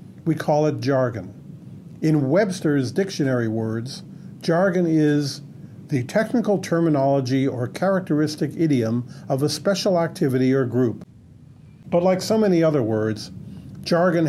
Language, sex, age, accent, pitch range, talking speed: English, male, 50-69, American, 130-165 Hz, 120 wpm